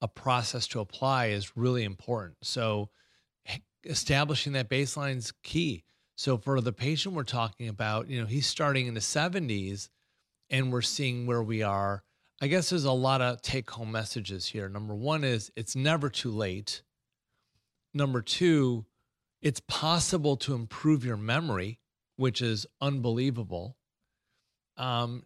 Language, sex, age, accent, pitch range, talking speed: English, male, 30-49, American, 115-140 Hz, 145 wpm